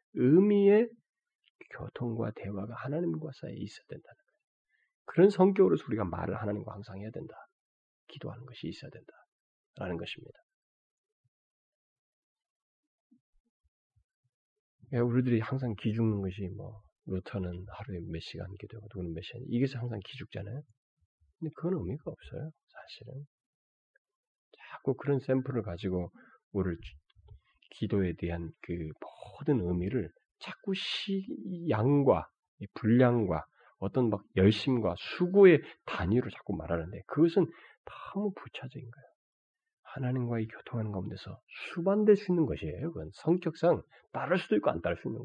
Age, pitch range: 40-59, 105-170 Hz